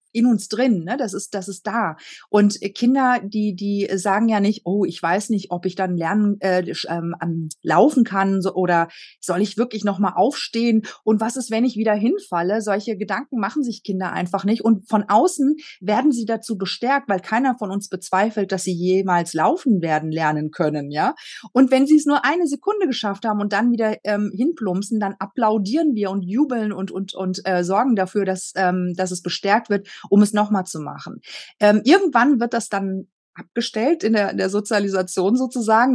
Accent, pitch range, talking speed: German, 185-230 Hz, 195 wpm